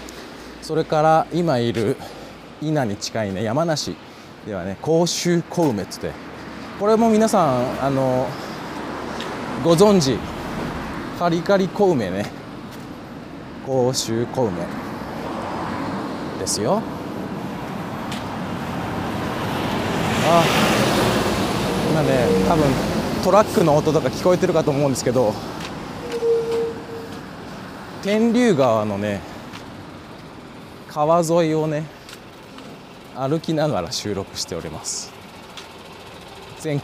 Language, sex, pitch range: Japanese, male, 125-165 Hz